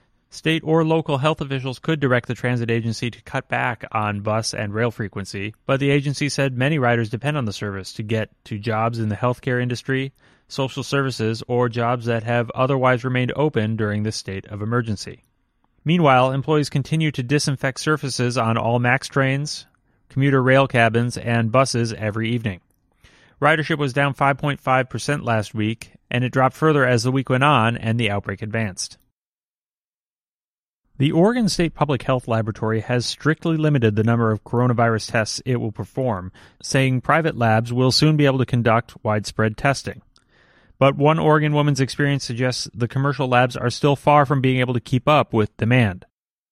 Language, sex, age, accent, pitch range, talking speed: English, male, 30-49, American, 110-140 Hz, 170 wpm